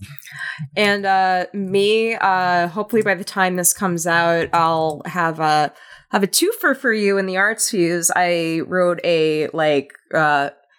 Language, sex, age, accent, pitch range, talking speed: English, female, 20-39, American, 155-195 Hz, 155 wpm